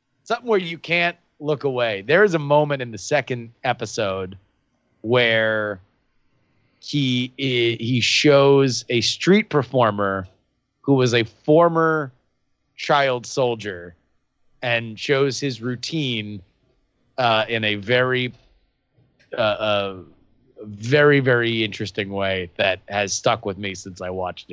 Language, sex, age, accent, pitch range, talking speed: English, male, 30-49, American, 120-175 Hz, 120 wpm